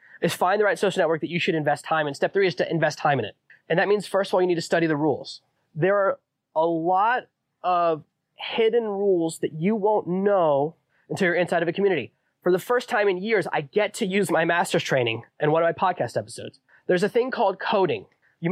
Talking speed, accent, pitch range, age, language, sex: 240 wpm, American, 165-200 Hz, 20-39, English, male